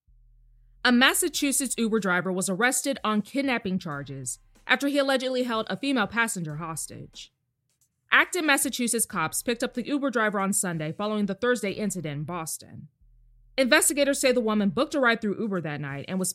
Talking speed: 170 wpm